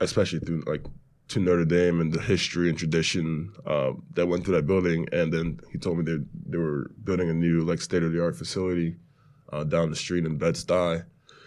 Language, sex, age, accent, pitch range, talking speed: English, male, 20-39, American, 85-95 Hz, 195 wpm